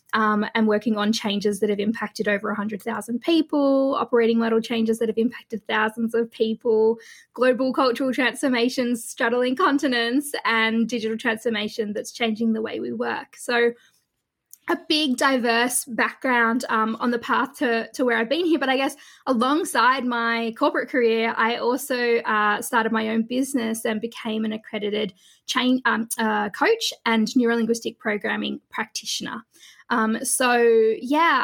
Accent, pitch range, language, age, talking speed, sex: Australian, 225-260 Hz, English, 20-39, 150 wpm, female